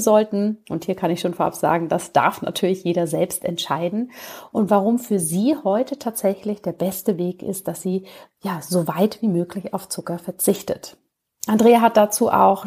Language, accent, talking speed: German, German, 180 wpm